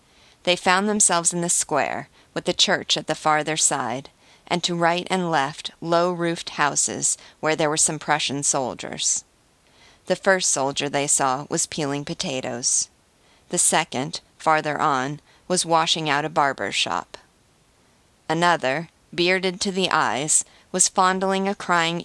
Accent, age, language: American, 40-59, English